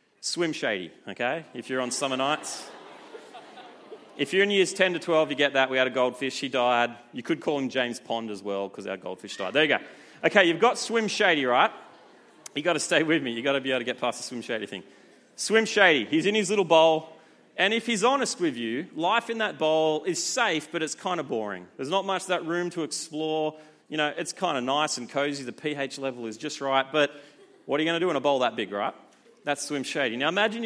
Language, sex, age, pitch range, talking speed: English, male, 30-49, 150-215 Hz, 245 wpm